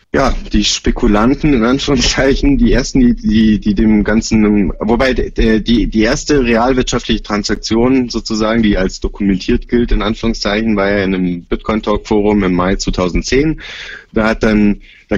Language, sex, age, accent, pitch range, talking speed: German, male, 30-49, German, 105-120 Hz, 155 wpm